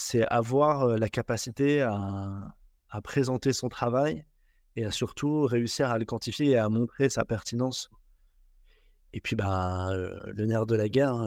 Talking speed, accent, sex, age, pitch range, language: 165 wpm, French, male, 20-39, 110-130 Hz, French